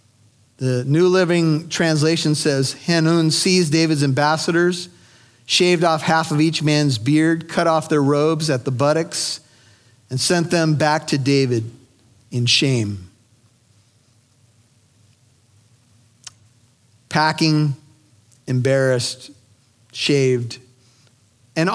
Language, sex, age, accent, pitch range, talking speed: English, male, 40-59, American, 120-165 Hz, 95 wpm